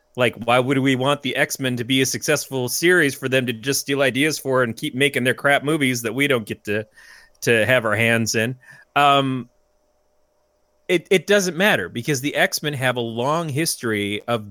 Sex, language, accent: male, English, American